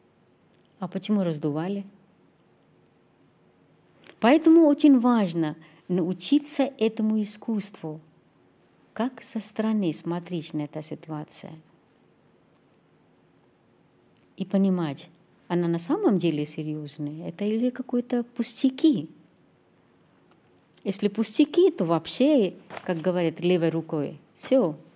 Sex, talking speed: female, 85 wpm